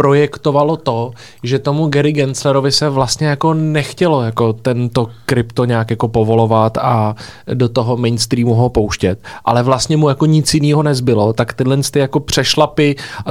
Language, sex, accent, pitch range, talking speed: Czech, male, native, 120-140 Hz, 155 wpm